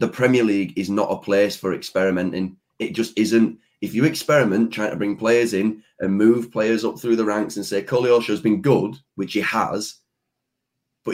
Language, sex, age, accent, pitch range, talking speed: English, male, 30-49, British, 90-115 Hz, 200 wpm